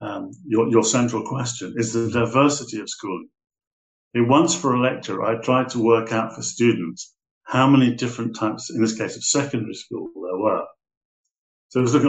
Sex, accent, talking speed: male, British, 185 wpm